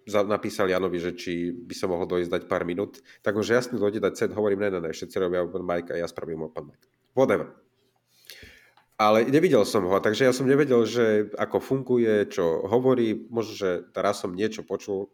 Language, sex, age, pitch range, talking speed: Slovak, male, 40-59, 105-140 Hz, 180 wpm